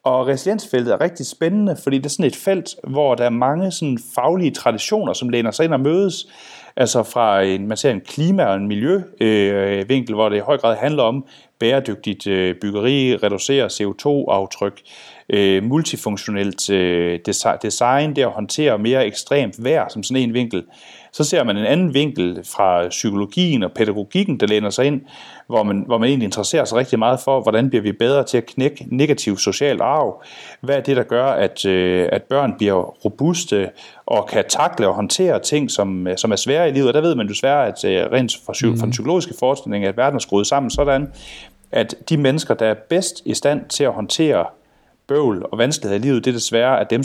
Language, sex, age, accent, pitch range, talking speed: Danish, male, 30-49, native, 105-145 Hz, 195 wpm